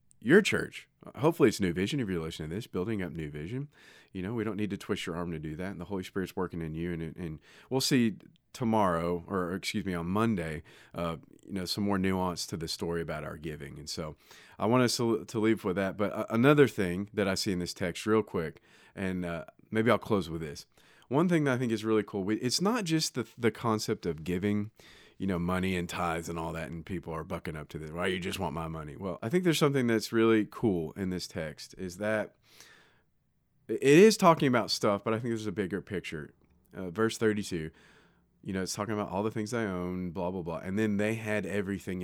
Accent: American